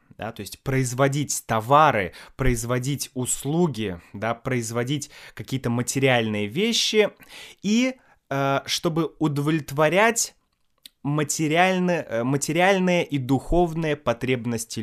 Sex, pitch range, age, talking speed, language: male, 115-155 Hz, 20-39, 85 wpm, Russian